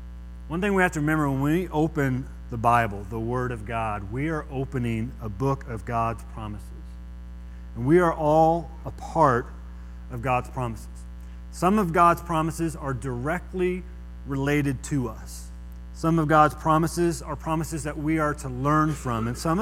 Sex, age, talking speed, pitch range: male, 30-49, 170 wpm, 115-160 Hz